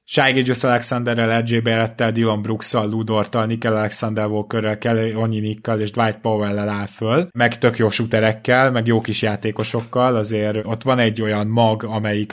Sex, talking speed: male, 125 wpm